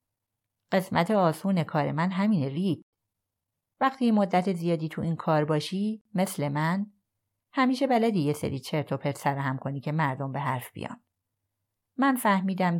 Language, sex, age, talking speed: Persian, female, 30-49, 145 wpm